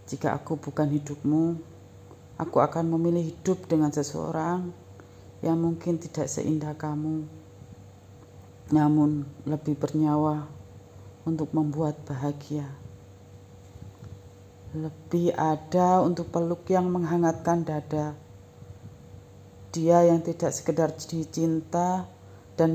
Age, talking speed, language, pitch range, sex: 40-59, 90 wpm, Indonesian, 100-160 Hz, female